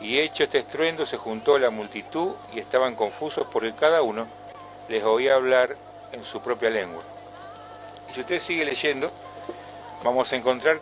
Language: Spanish